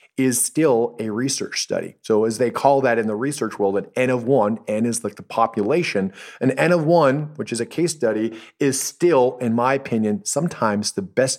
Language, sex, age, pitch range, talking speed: English, male, 30-49, 110-135 Hz, 210 wpm